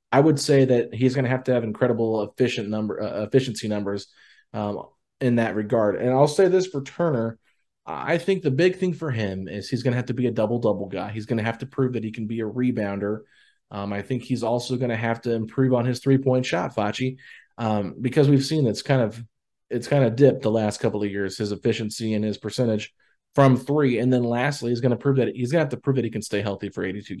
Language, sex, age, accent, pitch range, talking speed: English, male, 30-49, American, 105-130 Hz, 255 wpm